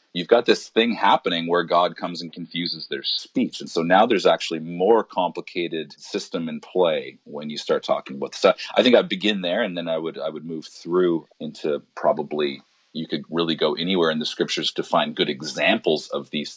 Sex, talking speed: male, 210 wpm